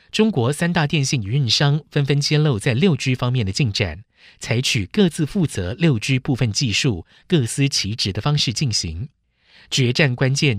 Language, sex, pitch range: Chinese, male, 110-150 Hz